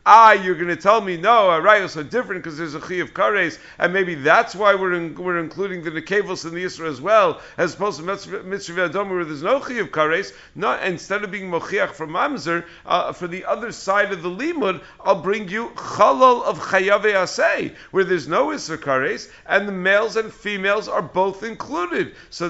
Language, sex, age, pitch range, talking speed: English, male, 50-69, 155-195 Hz, 220 wpm